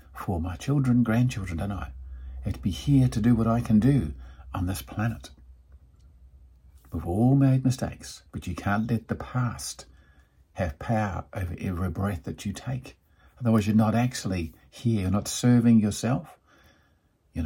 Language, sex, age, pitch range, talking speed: English, male, 50-69, 75-110 Hz, 165 wpm